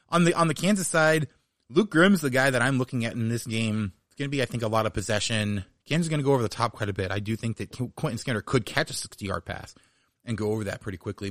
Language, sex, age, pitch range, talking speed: English, male, 30-49, 100-125 Hz, 295 wpm